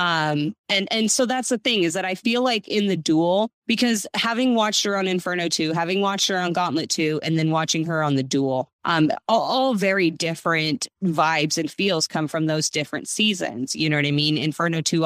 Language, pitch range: English, 155-190 Hz